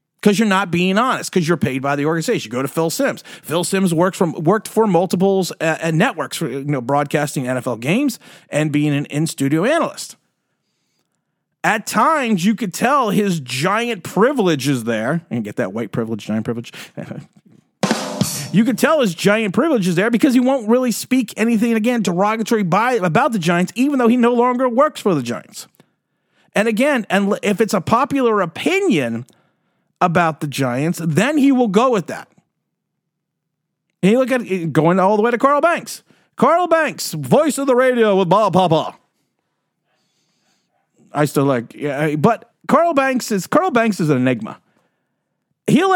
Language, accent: English, American